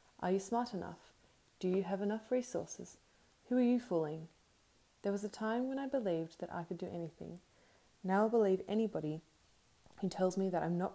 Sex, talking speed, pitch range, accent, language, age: female, 190 wpm, 180-225 Hz, Australian, English, 20-39